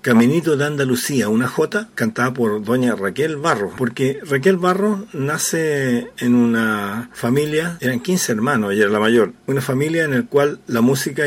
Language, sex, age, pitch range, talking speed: Spanish, male, 50-69, 120-150 Hz, 165 wpm